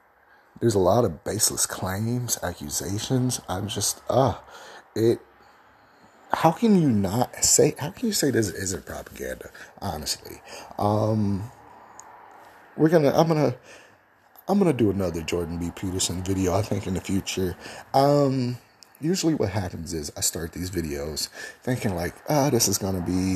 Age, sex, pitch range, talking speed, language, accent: 30-49, male, 90-130 Hz, 165 wpm, English, American